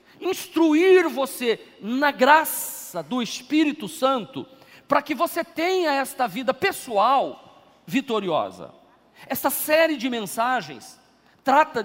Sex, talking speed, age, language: male, 100 wpm, 40-59, Portuguese